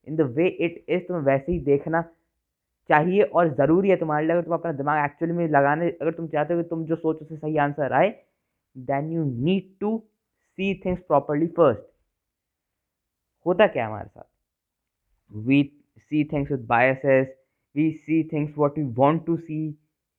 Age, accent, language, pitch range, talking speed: 20-39, native, Hindi, 135-165 Hz, 170 wpm